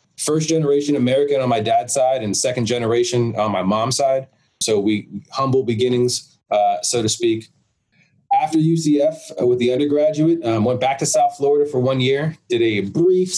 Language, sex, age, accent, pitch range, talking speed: English, male, 20-39, American, 115-145 Hz, 175 wpm